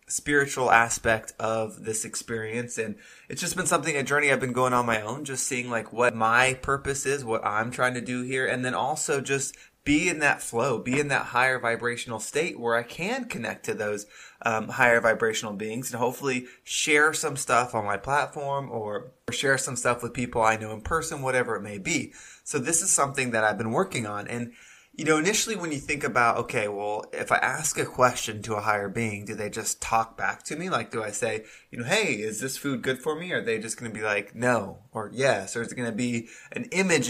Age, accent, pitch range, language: 20-39, American, 115-140 Hz, English